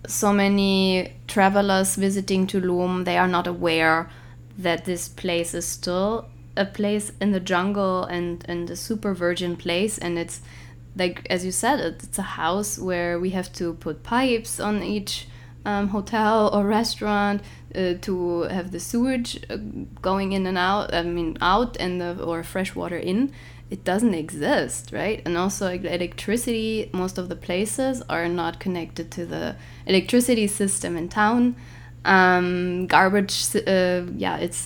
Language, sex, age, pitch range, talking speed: English, female, 20-39, 170-205 Hz, 150 wpm